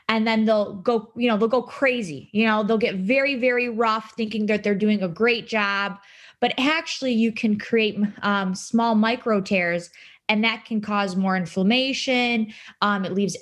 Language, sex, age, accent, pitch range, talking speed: English, female, 20-39, American, 195-230 Hz, 185 wpm